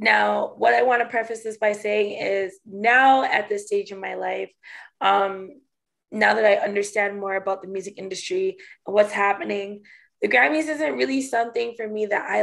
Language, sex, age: English, female, 20-39